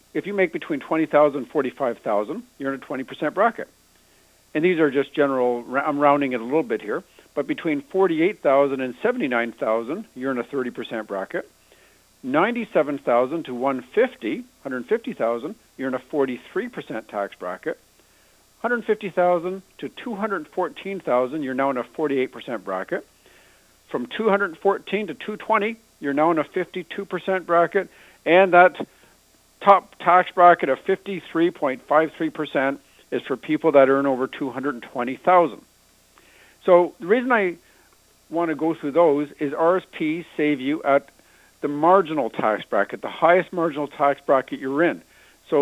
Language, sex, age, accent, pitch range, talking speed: English, male, 50-69, American, 135-185 Hz, 145 wpm